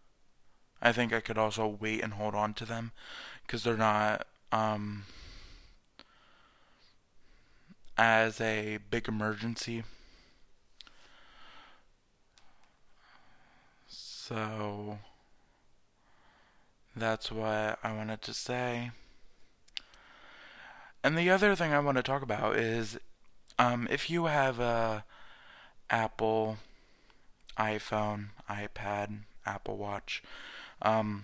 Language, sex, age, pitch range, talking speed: English, male, 20-39, 105-120 Hz, 90 wpm